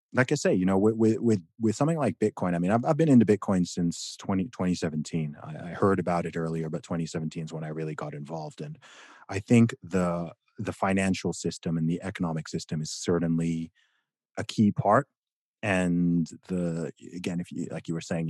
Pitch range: 80-95 Hz